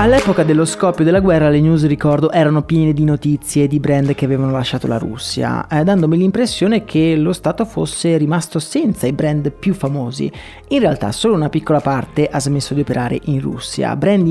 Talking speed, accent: 190 wpm, native